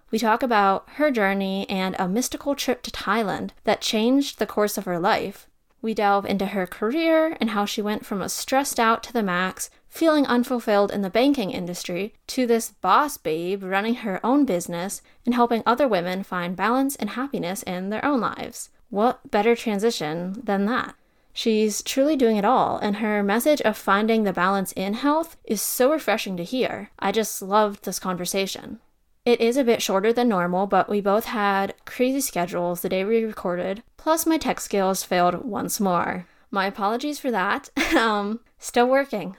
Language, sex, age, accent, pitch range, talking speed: English, female, 10-29, American, 185-245 Hz, 185 wpm